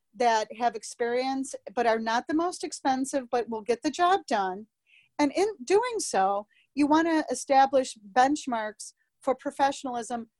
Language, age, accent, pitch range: English, 40-59, American, 230-295 Hz